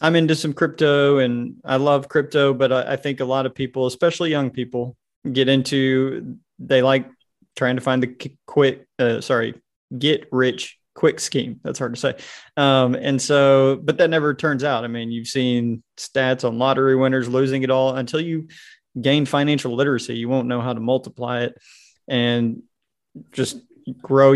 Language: English